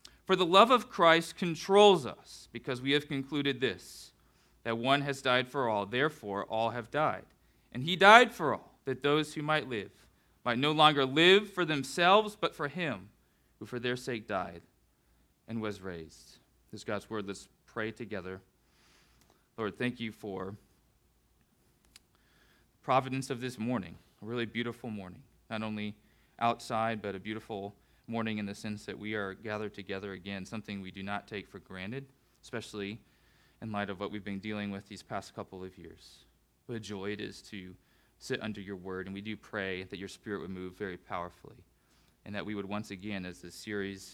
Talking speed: 185 wpm